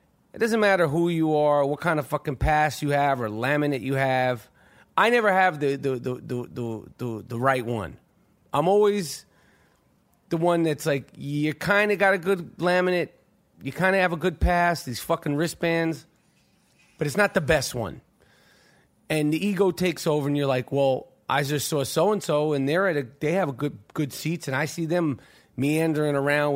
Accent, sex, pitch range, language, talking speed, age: American, male, 135-175 Hz, English, 200 wpm, 30-49